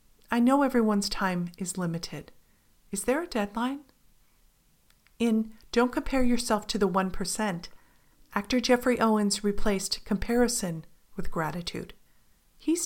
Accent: American